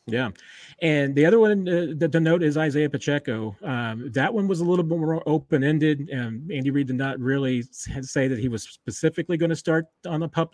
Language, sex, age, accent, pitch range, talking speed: English, male, 30-49, American, 120-150 Hz, 215 wpm